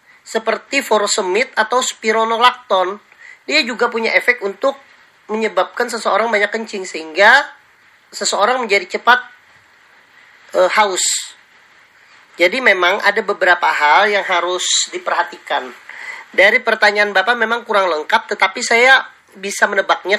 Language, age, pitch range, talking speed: Indonesian, 40-59, 195-245 Hz, 110 wpm